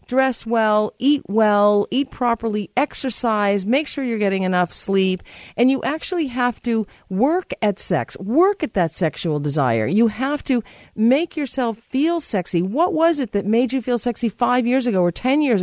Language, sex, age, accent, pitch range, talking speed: English, female, 50-69, American, 190-245 Hz, 180 wpm